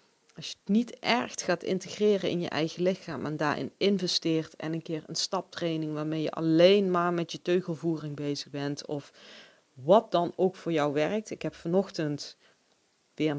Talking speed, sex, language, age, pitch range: 175 wpm, female, Dutch, 40-59, 145-185 Hz